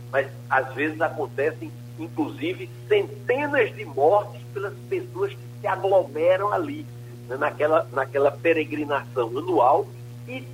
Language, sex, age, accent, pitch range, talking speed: Portuguese, male, 60-79, Brazilian, 120-150 Hz, 115 wpm